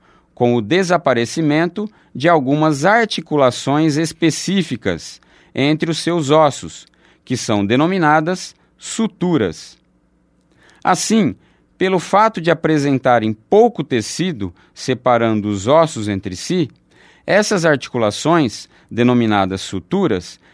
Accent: Brazilian